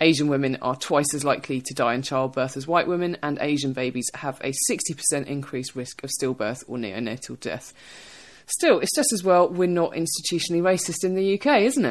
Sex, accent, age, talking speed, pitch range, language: female, British, 20-39, 195 wpm, 130-170 Hz, English